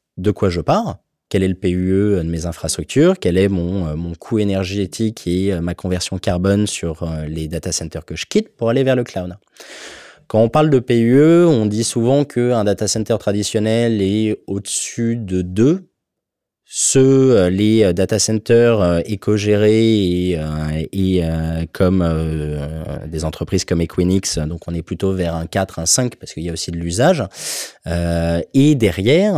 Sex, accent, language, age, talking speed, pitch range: male, French, French, 20-39, 165 wpm, 90-125 Hz